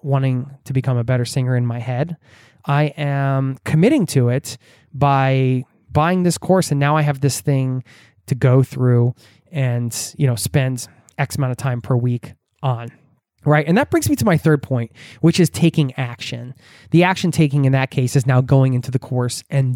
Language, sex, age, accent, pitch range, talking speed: English, male, 20-39, American, 125-150 Hz, 195 wpm